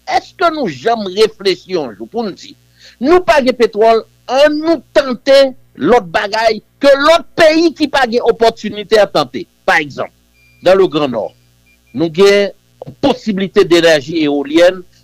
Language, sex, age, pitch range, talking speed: French, male, 60-79, 175-275 Hz, 150 wpm